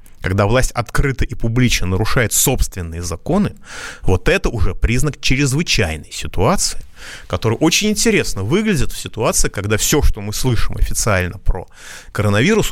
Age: 30-49